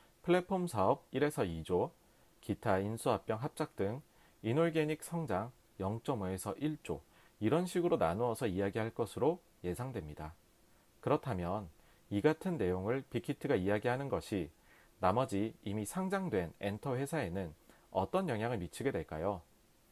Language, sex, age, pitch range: Korean, male, 40-59, 100-155 Hz